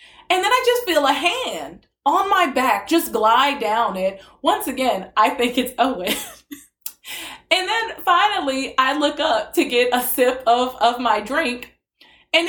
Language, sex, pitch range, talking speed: English, female, 240-340 Hz, 170 wpm